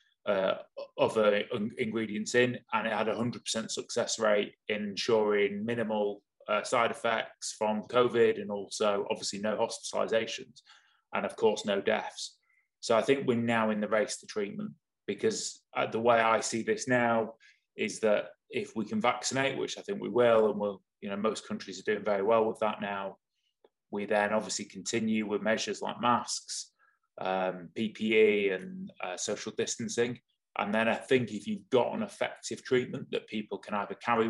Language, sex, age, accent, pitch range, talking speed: English, male, 20-39, British, 105-125 Hz, 175 wpm